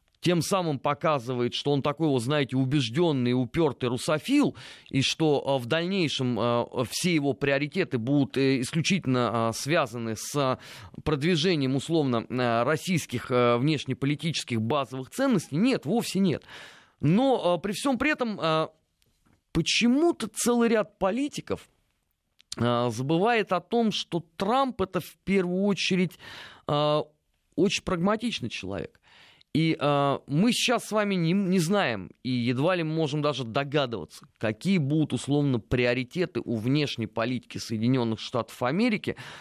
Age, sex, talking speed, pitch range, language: 20-39, male, 120 wpm, 125-180 Hz, Russian